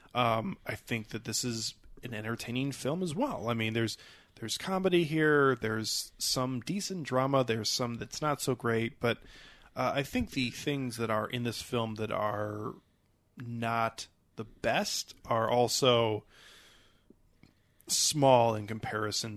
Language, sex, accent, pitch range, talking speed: English, male, American, 110-130 Hz, 150 wpm